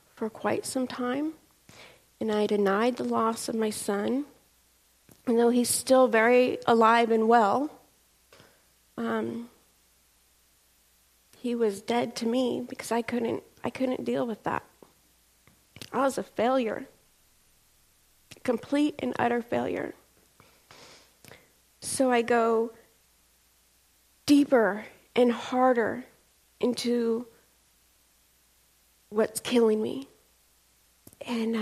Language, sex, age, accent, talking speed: English, female, 40-59, American, 100 wpm